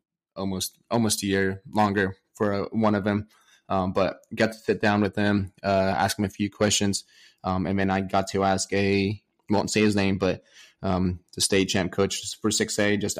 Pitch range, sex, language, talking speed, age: 95-110 Hz, male, English, 205 wpm, 20-39